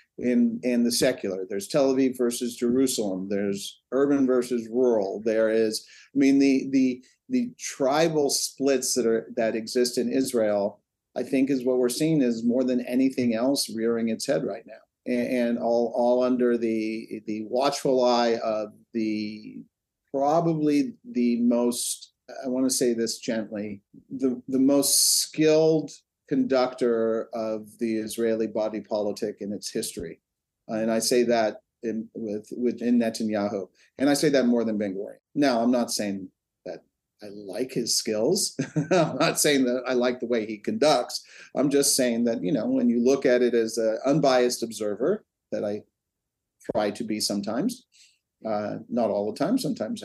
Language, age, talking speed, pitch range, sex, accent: English, 50-69, 165 wpm, 110-135 Hz, male, American